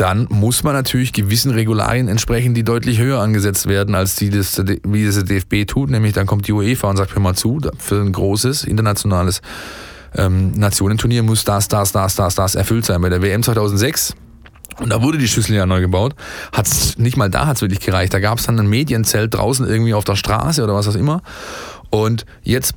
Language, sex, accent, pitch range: German, male, German, 100-125 Hz